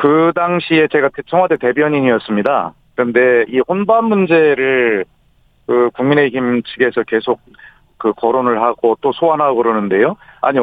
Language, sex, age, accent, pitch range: Korean, male, 40-59, native, 130-175 Hz